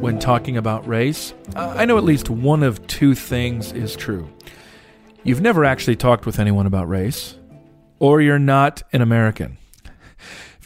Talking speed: 160 wpm